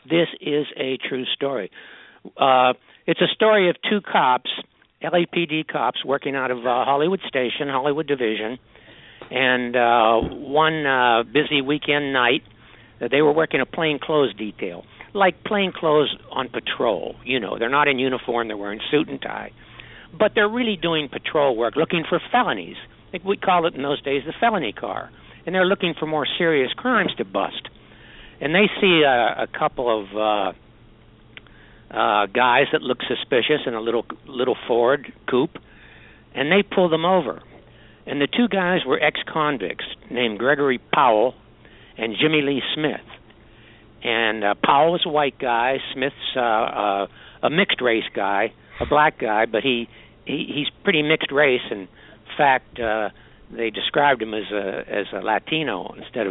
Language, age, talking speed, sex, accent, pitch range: English, 60-79, 160 wpm, male, American, 115-165 Hz